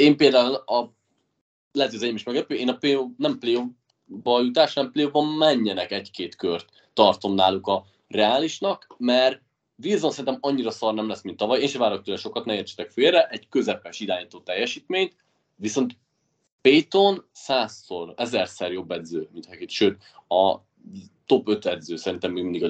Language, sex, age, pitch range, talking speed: Hungarian, male, 20-39, 100-140 Hz, 150 wpm